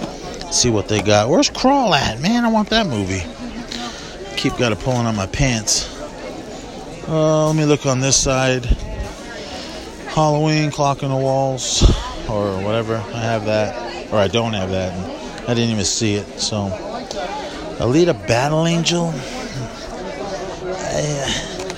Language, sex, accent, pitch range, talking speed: English, male, American, 95-130 Hz, 140 wpm